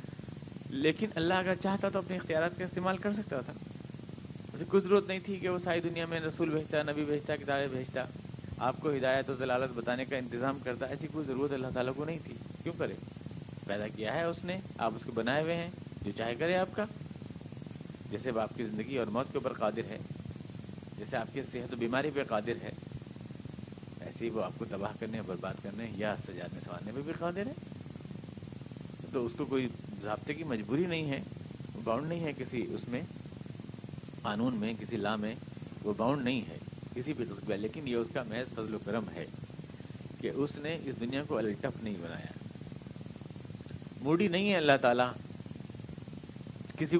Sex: male